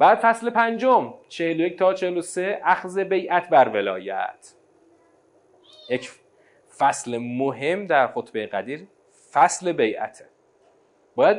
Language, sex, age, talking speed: Persian, male, 30-49, 105 wpm